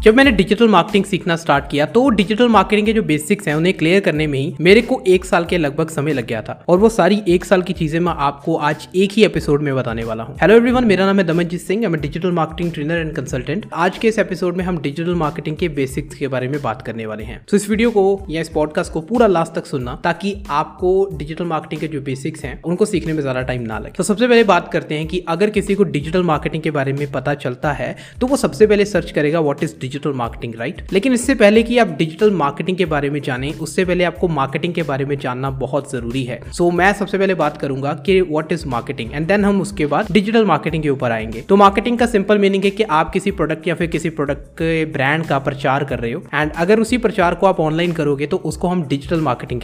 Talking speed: 225 wpm